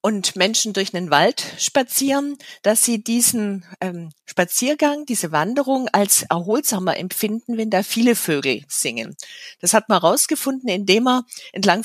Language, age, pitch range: German, 40-59, 185-235 Hz